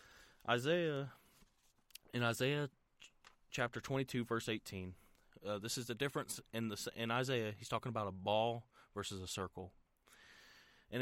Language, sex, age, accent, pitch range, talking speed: English, male, 30-49, American, 100-125 Hz, 135 wpm